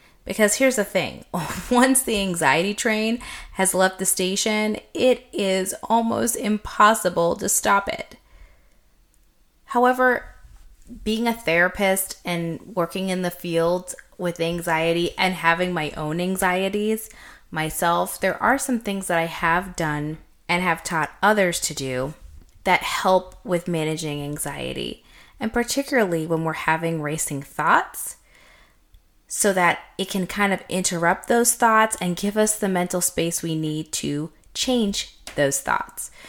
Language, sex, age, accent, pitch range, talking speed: English, female, 20-39, American, 155-205 Hz, 135 wpm